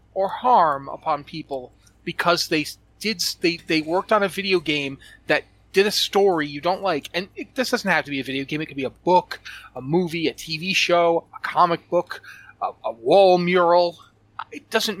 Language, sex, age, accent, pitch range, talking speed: English, male, 30-49, American, 145-195 Hz, 200 wpm